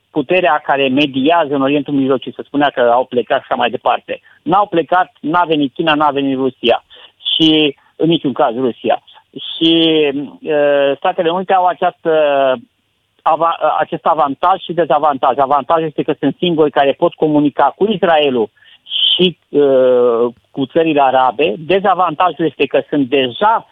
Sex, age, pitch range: male, 50-69, 140-185 Hz